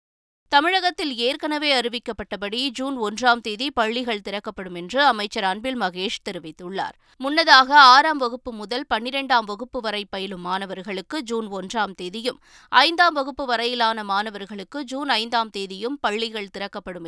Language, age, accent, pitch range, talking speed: Tamil, 20-39, native, 200-260 Hz, 120 wpm